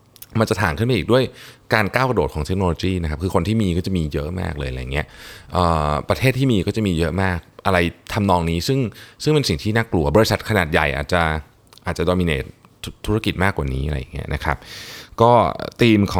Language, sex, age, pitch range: Thai, male, 20-39, 80-110 Hz